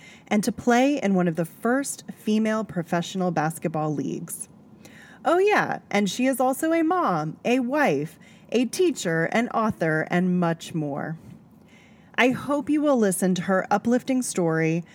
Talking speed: 155 wpm